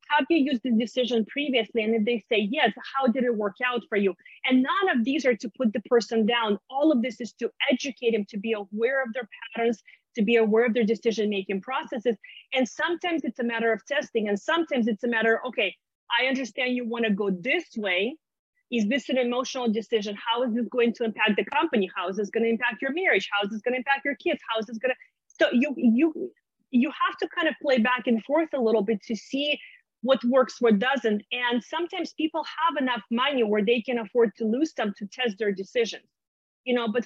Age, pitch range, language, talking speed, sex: 30-49, 220-265 Hz, English, 230 wpm, female